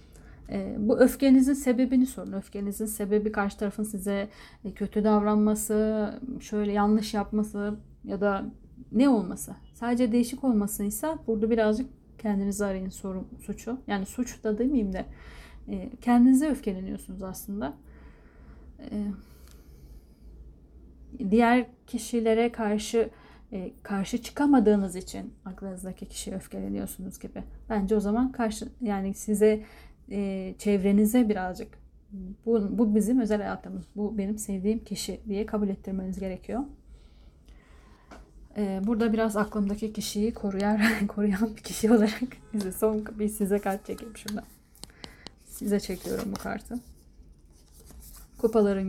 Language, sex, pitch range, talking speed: Turkish, female, 195-225 Hz, 110 wpm